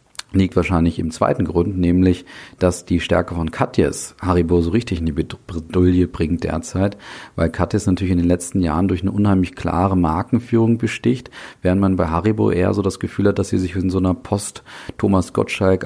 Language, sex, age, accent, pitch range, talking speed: German, male, 40-59, German, 85-100 Hz, 185 wpm